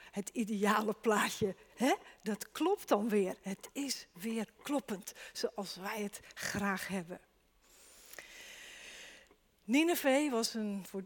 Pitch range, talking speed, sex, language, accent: 210-290 Hz, 110 wpm, female, Dutch, Dutch